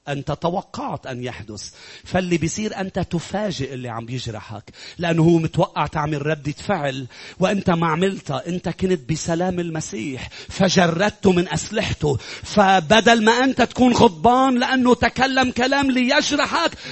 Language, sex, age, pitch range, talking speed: English, male, 40-59, 145-235 Hz, 130 wpm